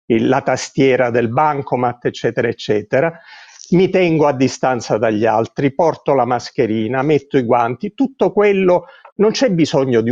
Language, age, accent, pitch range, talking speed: Italian, 50-69, native, 130-180 Hz, 140 wpm